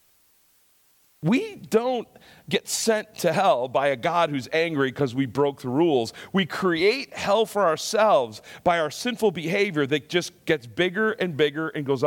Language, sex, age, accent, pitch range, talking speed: English, male, 40-59, American, 135-175 Hz, 165 wpm